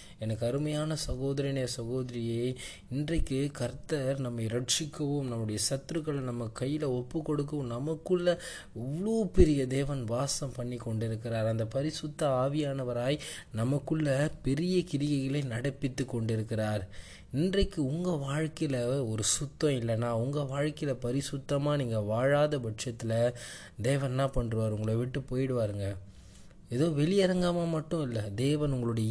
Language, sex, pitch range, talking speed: Tamil, male, 110-145 Hz, 105 wpm